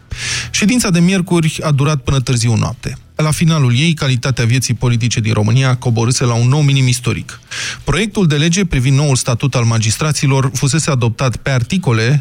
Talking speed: 165 wpm